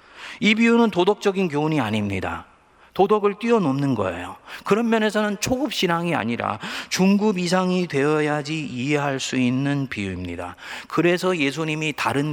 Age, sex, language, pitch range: 40-59, male, Korean, 115-160 Hz